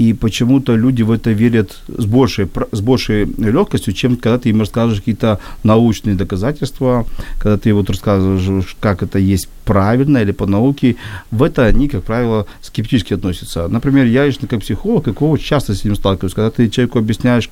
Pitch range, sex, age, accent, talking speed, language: 105-130 Hz, male, 40-59, native, 165 wpm, Ukrainian